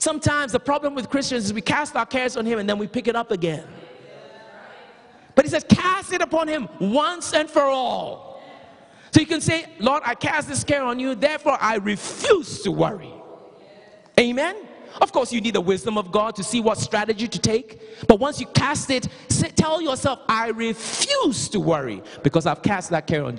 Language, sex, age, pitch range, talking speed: English, male, 30-49, 195-260 Hz, 200 wpm